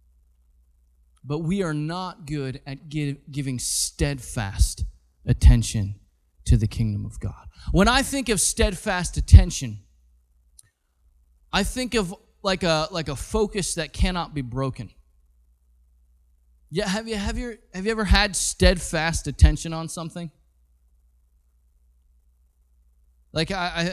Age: 20-39